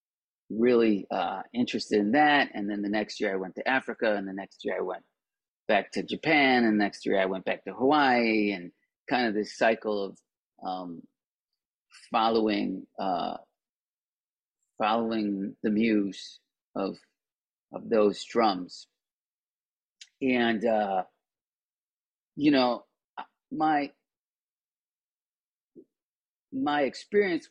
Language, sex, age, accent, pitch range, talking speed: English, male, 30-49, American, 100-125 Hz, 120 wpm